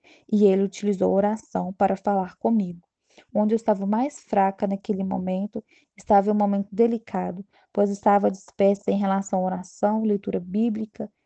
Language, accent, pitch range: Portuguese, Brazilian, 200-225 Hz